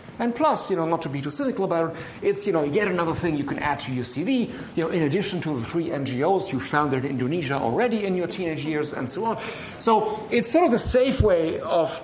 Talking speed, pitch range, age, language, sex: 250 wpm, 135-200 Hz, 50-69, English, male